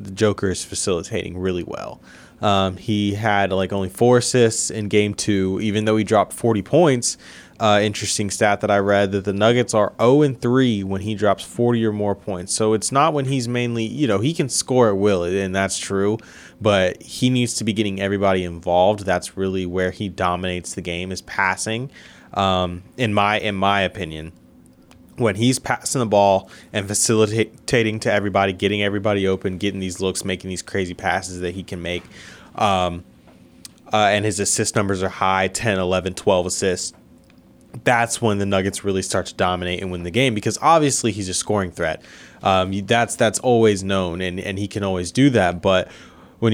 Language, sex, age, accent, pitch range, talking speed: English, male, 20-39, American, 95-110 Hz, 190 wpm